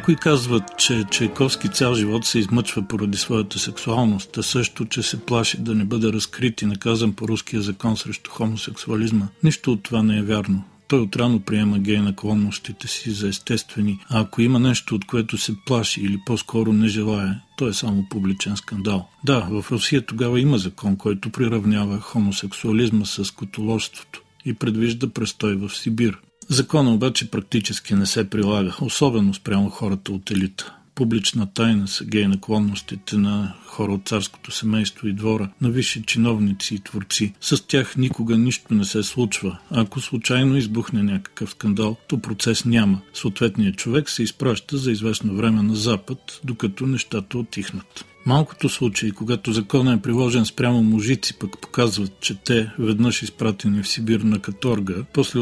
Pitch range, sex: 105-120 Hz, male